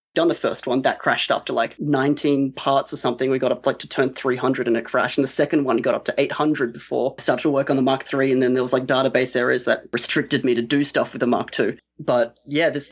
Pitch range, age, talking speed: 125-145 Hz, 20-39, 280 wpm